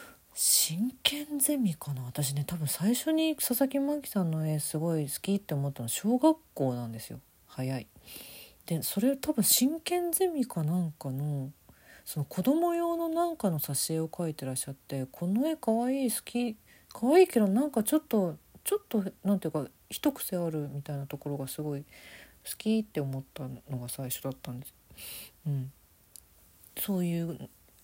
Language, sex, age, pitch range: Japanese, female, 40-59, 135-210 Hz